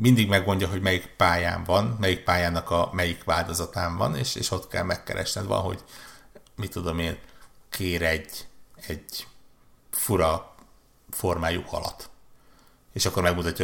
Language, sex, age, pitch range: Hungarian, male, 60-79, 85-100 Hz